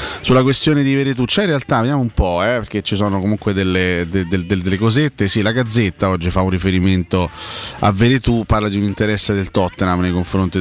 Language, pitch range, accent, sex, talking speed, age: Italian, 95-110 Hz, native, male, 225 wpm, 30-49